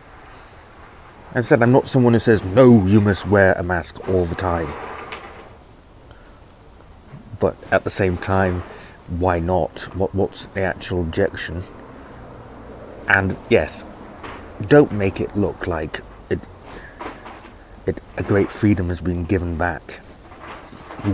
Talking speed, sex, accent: 125 wpm, male, British